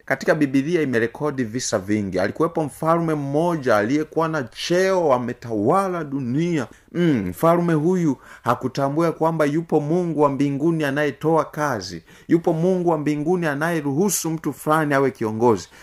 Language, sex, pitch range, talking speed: Swahili, male, 115-160 Hz, 120 wpm